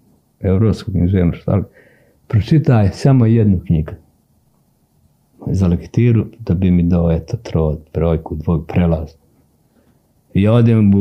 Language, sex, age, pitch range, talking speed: Croatian, male, 50-69, 90-120 Hz, 105 wpm